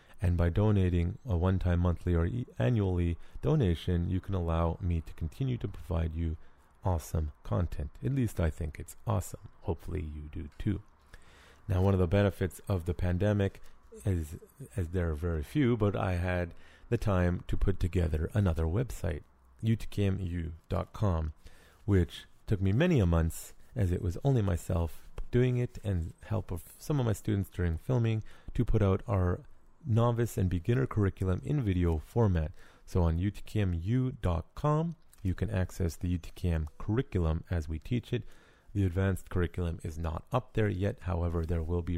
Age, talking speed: 30-49, 165 wpm